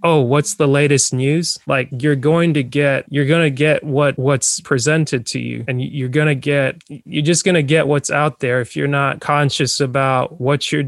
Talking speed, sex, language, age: 215 wpm, male, English, 20-39